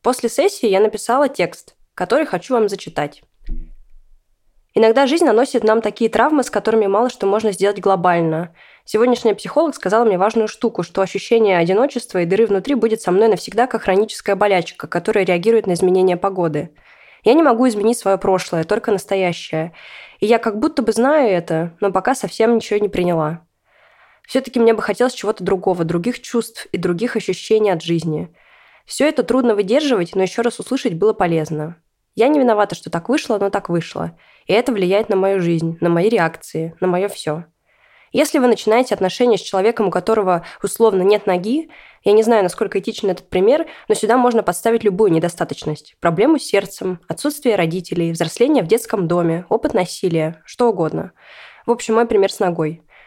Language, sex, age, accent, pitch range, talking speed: Russian, female, 20-39, native, 180-230 Hz, 175 wpm